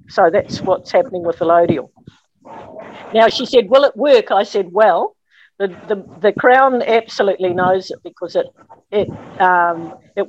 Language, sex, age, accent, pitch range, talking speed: English, female, 50-69, Australian, 170-215 Hz, 165 wpm